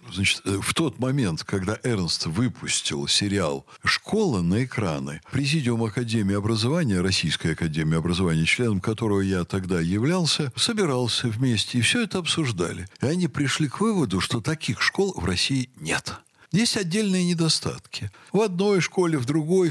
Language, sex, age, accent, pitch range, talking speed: Russian, male, 60-79, native, 110-165 Hz, 145 wpm